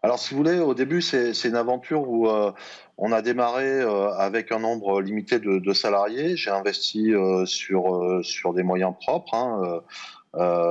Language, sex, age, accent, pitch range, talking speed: French, male, 30-49, French, 95-120 Hz, 190 wpm